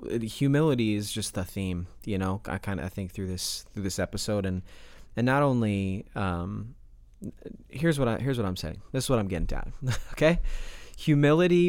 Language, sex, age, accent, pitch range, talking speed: English, male, 30-49, American, 100-120 Hz, 190 wpm